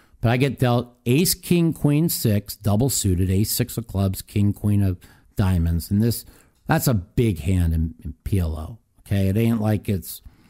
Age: 50-69